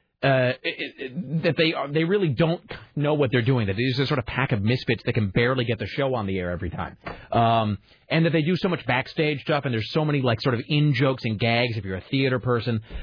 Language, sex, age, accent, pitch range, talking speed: English, male, 30-49, American, 120-160 Hz, 250 wpm